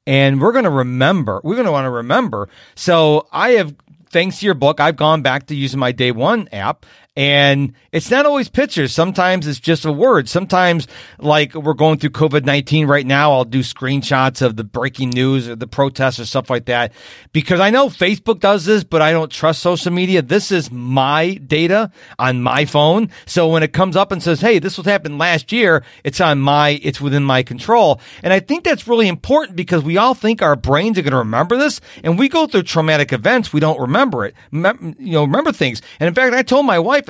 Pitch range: 145-195 Hz